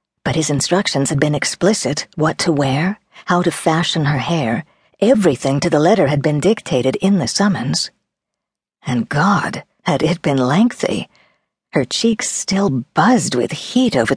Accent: American